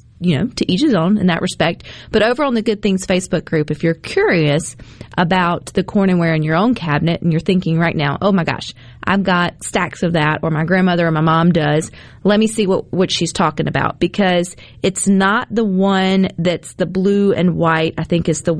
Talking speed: 230 wpm